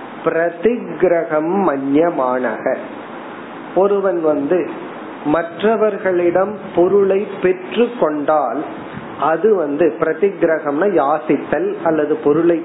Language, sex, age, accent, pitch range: Tamil, male, 40-59, native, 150-185 Hz